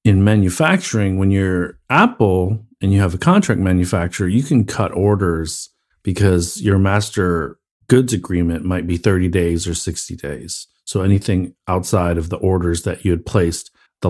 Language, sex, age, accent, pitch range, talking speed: English, male, 40-59, American, 90-110 Hz, 160 wpm